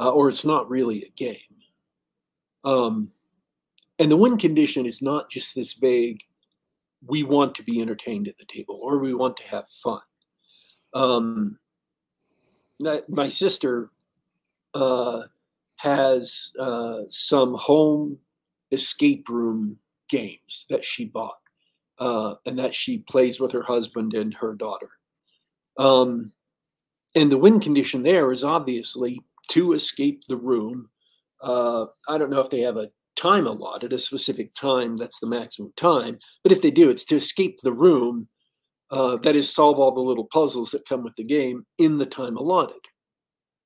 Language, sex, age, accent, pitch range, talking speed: English, male, 50-69, American, 125-160 Hz, 155 wpm